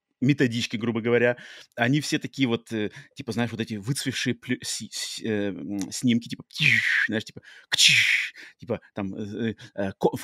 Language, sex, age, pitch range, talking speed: Russian, male, 30-49, 110-140 Hz, 160 wpm